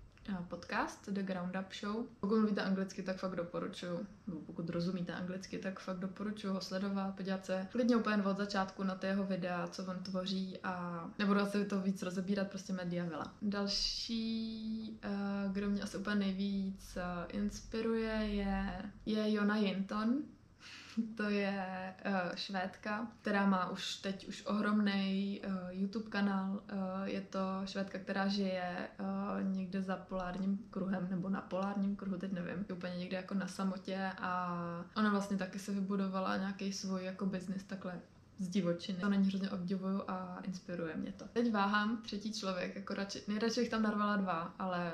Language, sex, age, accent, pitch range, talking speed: Czech, female, 20-39, native, 185-200 Hz, 160 wpm